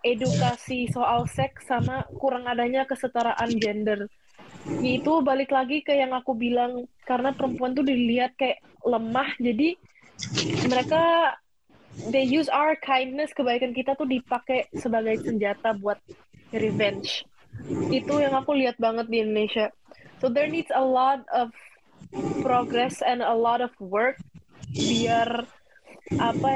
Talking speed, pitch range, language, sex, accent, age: 125 wpm, 235-275 Hz, Indonesian, female, native, 20-39